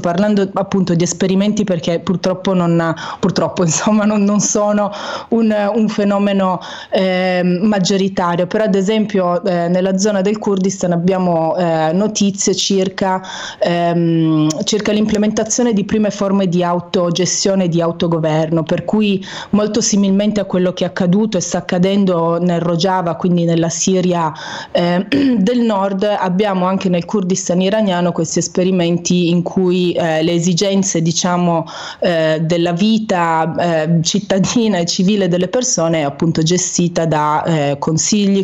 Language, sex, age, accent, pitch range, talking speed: Italian, female, 30-49, native, 170-200 Hz, 130 wpm